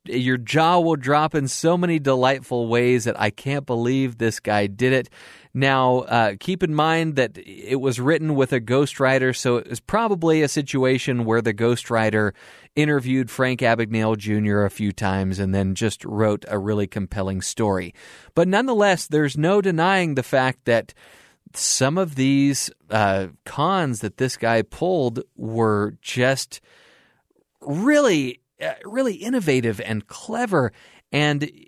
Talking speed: 150 wpm